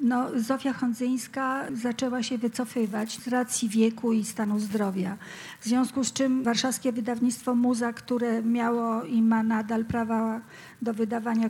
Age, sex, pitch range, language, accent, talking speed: 50-69, female, 230-250 Hz, Polish, native, 135 wpm